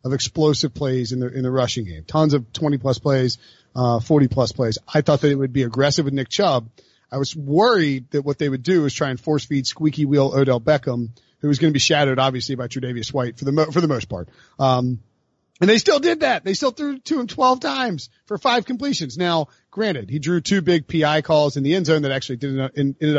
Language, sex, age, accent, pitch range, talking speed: English, male, 40-59, American, 135-170 Hz, 245 wpm